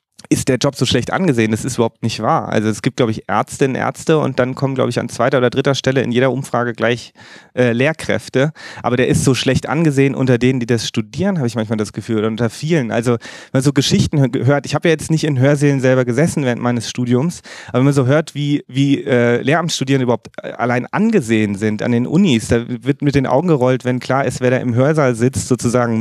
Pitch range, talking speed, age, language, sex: 120-140 Hz, 235 wpm, 30-49, German, male